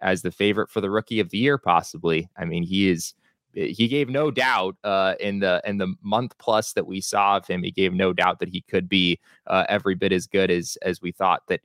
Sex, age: male, 20-39